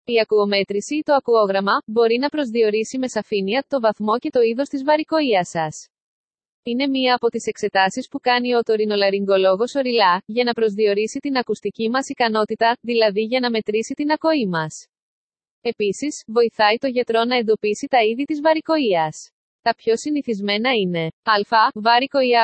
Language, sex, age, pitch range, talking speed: Greek, female, 20-39, 210-265 Hz, 160 wpm